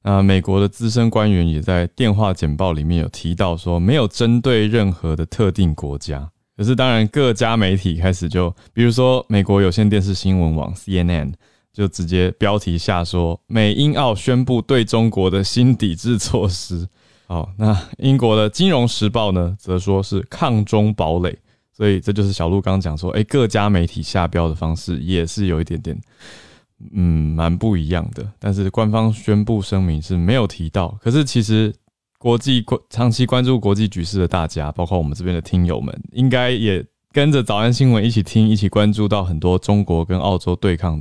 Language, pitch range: Chinese, 90-110 Hz